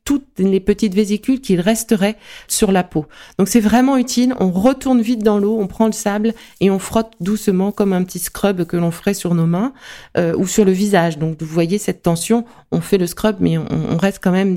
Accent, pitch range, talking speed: French, 175-220 Hz, 230 wpm